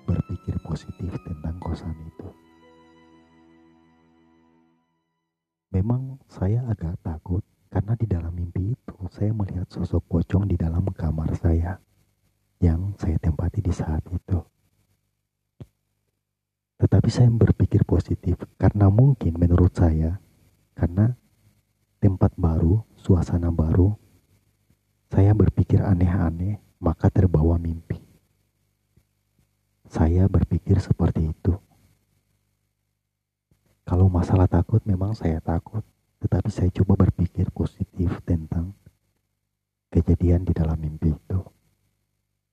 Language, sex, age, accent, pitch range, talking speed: Indonesian, male, 40-59, native, 85-105 Hz, 95 wpm